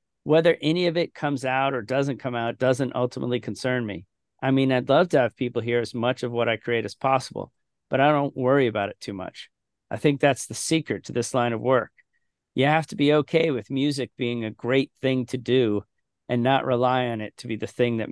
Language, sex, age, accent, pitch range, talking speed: English, male, 40-59, American, 115-135 Hz, 235 wpm